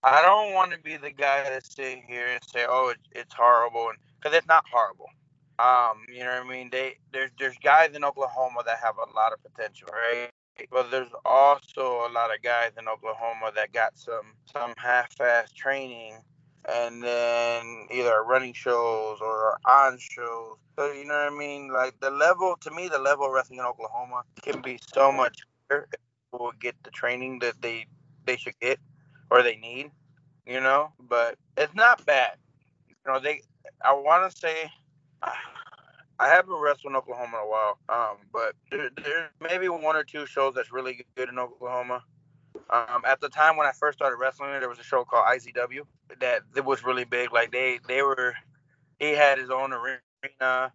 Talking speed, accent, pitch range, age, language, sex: 190 wpm, American, 120-145 Hz, 20-39, English, male